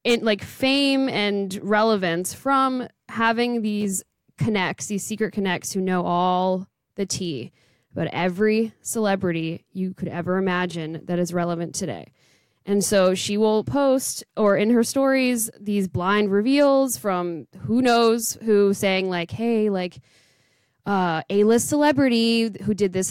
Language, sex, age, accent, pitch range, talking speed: English, female, 20-39, American, 180-220 Hz, 140 wpm